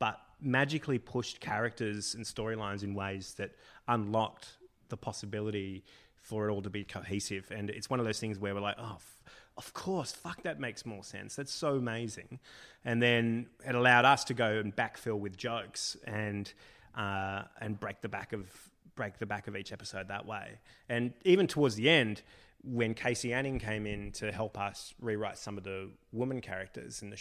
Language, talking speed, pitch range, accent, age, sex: English, 185 wpm, 100-120 Hz, Australian, 30-49, male